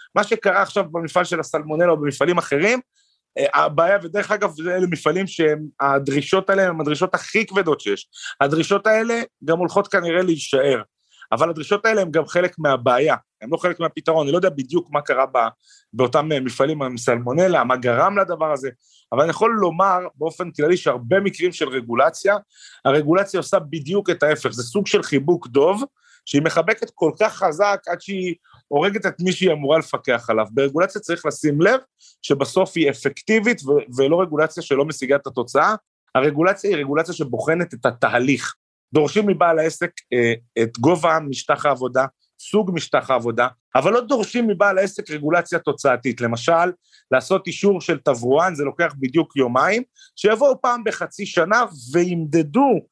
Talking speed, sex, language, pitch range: 155 wpm, male, Hebrew, 145-195 Hz